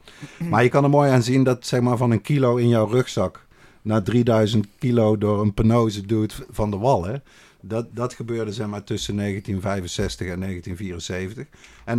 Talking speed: 180 wpm